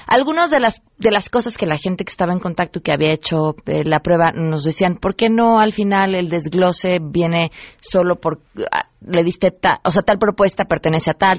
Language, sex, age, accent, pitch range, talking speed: Spanish, female, 30-49, Mexican, 160-200 Hz, 215 wpm